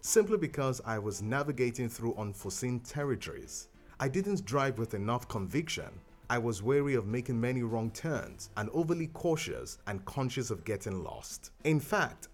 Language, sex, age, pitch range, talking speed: English, male, 30-49, 110-155 Hz, 155 wpm